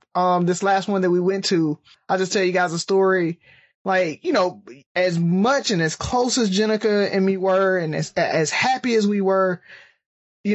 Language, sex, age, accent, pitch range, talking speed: English, male, 20-39, American, 185-220 Hz, 205 wpm